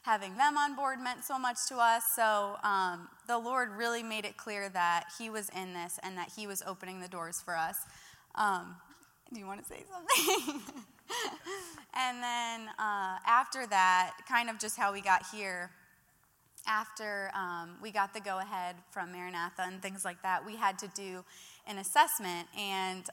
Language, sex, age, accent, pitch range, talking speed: English, female, 20-39, American, 185-230 Hz, 180 wpm